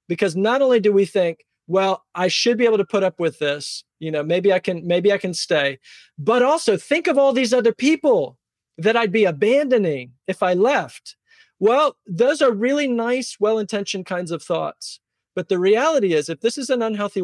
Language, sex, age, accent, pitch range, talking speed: English, male, 40-59, American, 175-240 Hz, 200 wpm